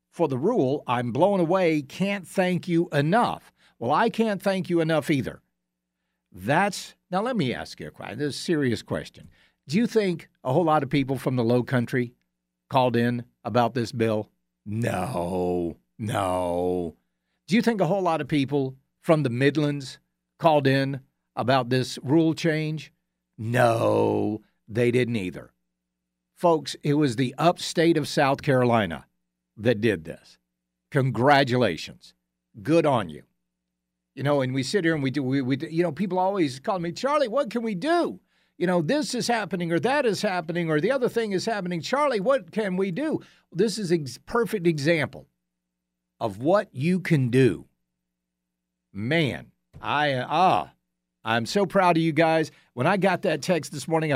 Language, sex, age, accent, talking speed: English, male, 60-79, American, 165 wpm